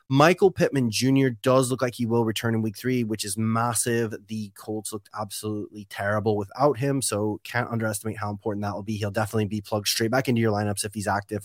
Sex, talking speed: male, 220 wpm